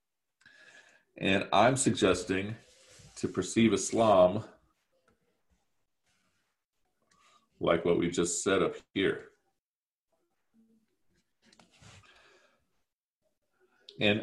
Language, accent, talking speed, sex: English, American, 60 wpm, male